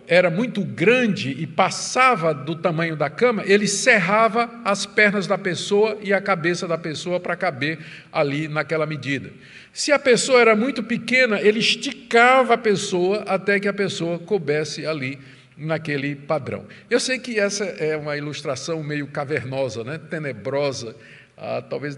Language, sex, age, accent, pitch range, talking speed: Portuguese, male, 50-69, Brazilian, 165-235 Hz, 155 wpm